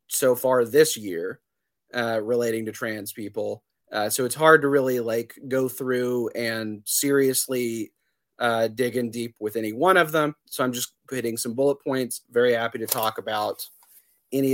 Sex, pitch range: male, 120-140 Hz